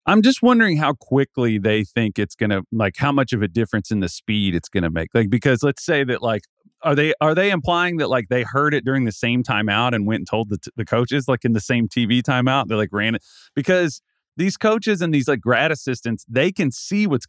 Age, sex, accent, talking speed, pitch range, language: 30-49, male, American, 245 wpm, 105-135 Hz, English